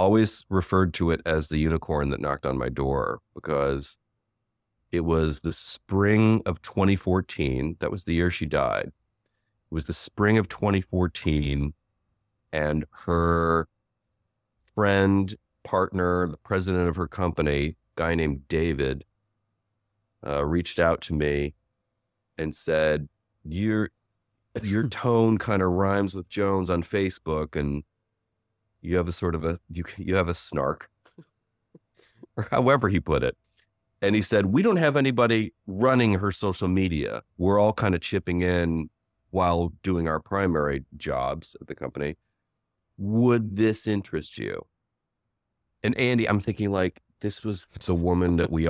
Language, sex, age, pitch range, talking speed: English, male, 30-49, 80-105 Hz, 145 wpm